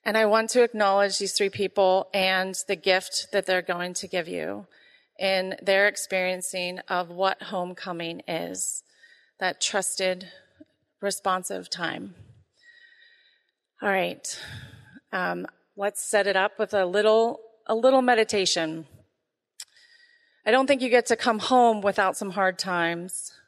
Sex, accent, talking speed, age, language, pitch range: female, American, 135 wpm, 30-49, English, 180-215 Hz